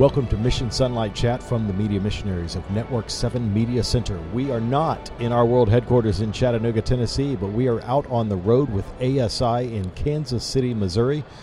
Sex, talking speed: male, 195 wpm